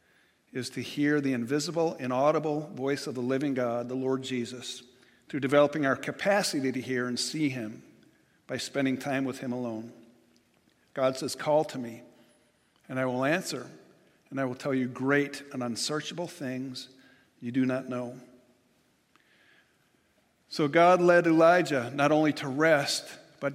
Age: 50-69